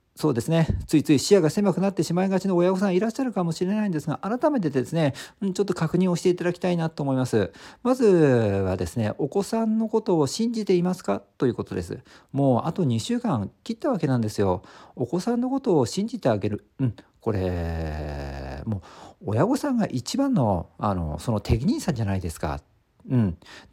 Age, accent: 50-69, native